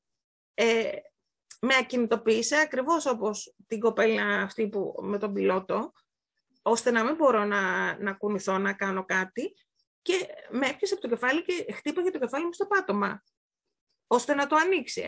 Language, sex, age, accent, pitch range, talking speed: Greek, female, 30-49, native, 210-330 Hz, 150 wpm